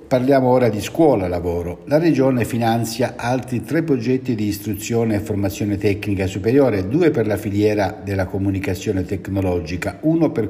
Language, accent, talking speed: Italian, native, 145 wpm